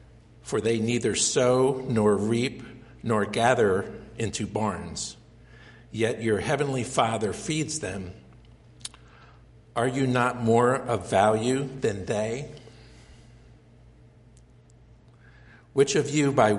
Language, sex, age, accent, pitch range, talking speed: English, male, 60-79, American, 110-125 Hz, 100 wpm